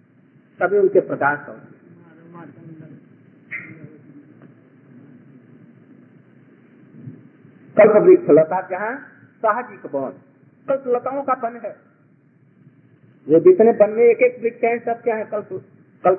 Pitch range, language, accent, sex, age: 170-235 Hz, Hindi, native, male, 50-69